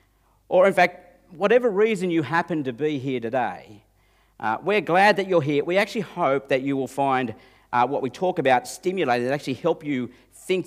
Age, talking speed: 50-69, 195 wpm